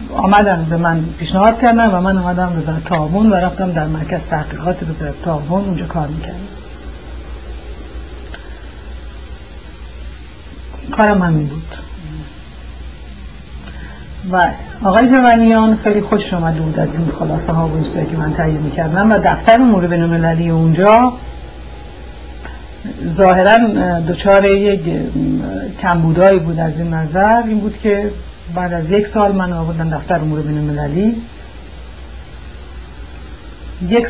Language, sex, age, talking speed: Persian, female, 60-79, 120 wpm